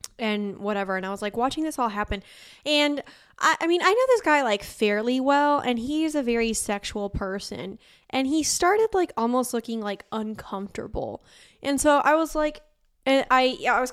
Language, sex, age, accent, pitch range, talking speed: English, female, 10-29, American, 195-250 Hz, 190 wpm